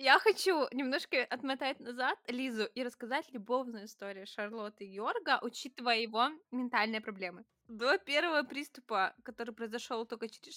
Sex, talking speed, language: female, 135 wpm, Russian